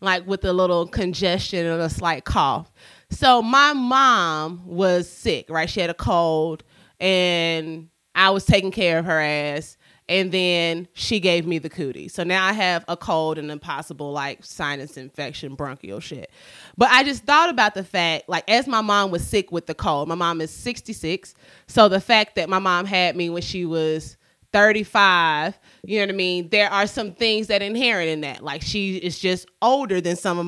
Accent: American